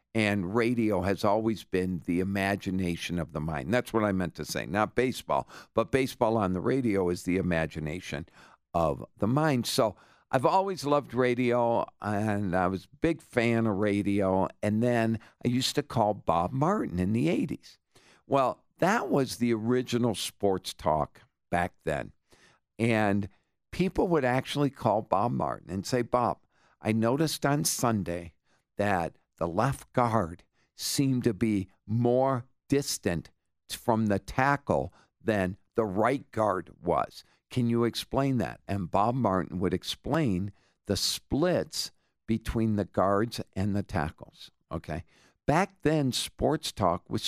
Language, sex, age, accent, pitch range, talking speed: English, male, 50-69, American, 95-125 Hz, 145 wpm